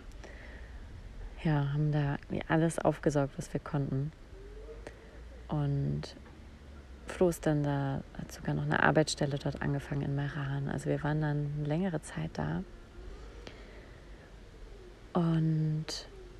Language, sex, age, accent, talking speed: German, female, 30-49, German, 105 wpm